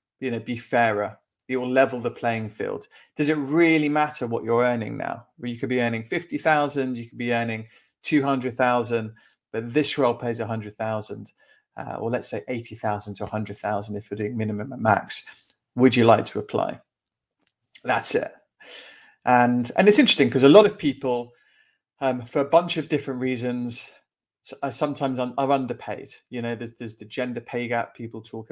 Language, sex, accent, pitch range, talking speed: English, male, British, 110-135 Hz, 175 wpm